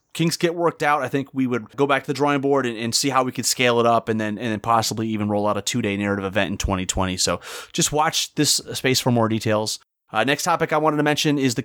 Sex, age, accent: male, 30-49, American